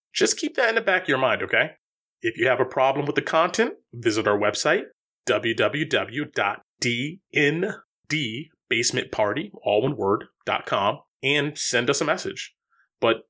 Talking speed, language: 125 wpm, English